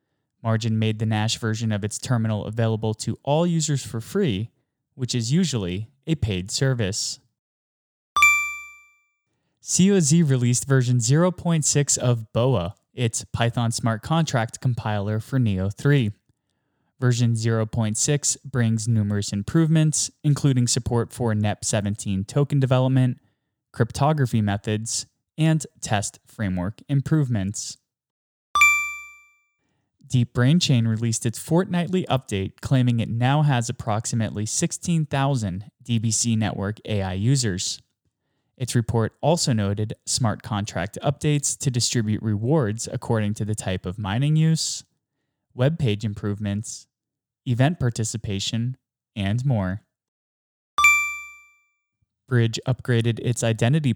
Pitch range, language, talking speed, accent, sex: 110-140 Hz, English, 105 wpm, American, male